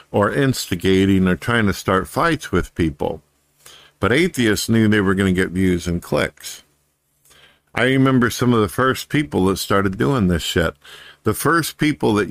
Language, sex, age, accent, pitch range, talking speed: English, male, 50-69, American, 90-110 Hz, 175 wpm